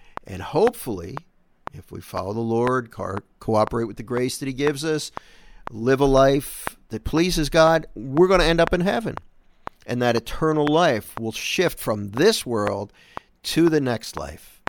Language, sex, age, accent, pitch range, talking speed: English, male, 50-69, American, 110-160 Hz, 170 wpm